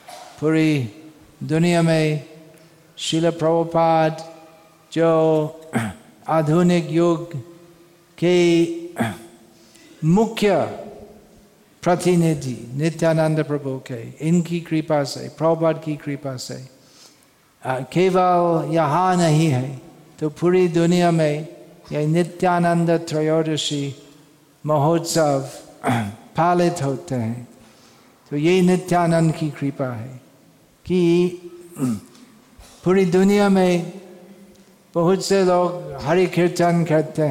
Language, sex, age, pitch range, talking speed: Hindi, male, 50-69, 145-170 Hz, 80 wpm